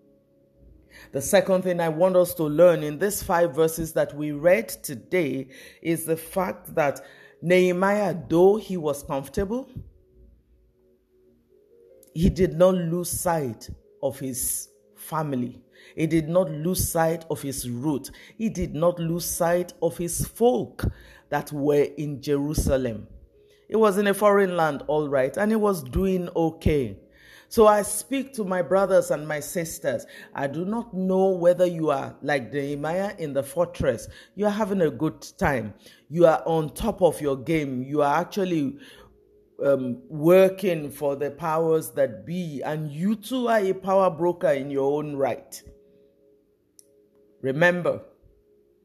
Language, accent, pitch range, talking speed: English, Nigerian, 135-185 Hz, 150 wpm